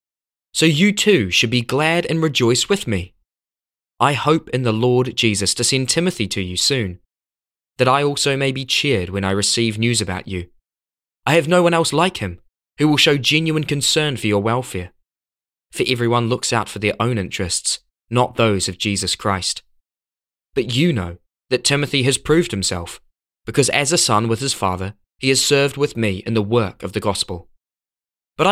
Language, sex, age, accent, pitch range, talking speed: English, male, 20-39, British, 90-135 Hz, 185 wpm